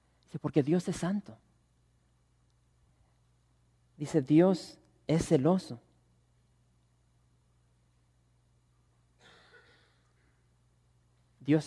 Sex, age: male, 40-59